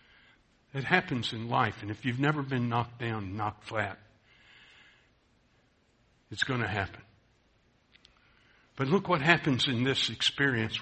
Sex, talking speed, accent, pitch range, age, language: male, 135 wpm, American, 110-130 Hz, 60-79, English